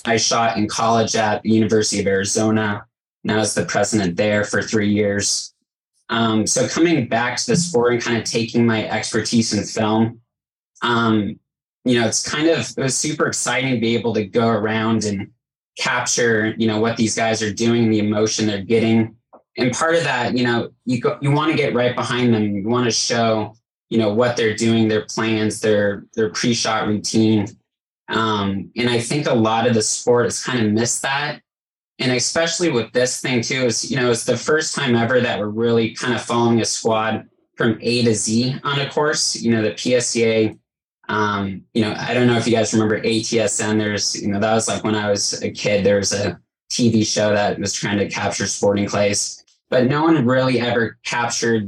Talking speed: 205 wpm